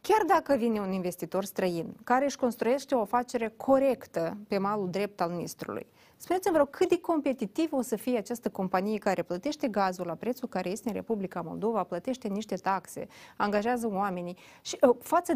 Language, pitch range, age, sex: Romanian, 190-250 Hz, 30-49, female